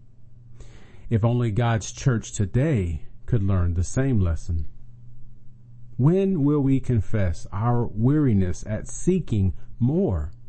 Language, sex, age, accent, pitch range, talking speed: English, male, 40-59, American, 105-120 Hz, 110 wpm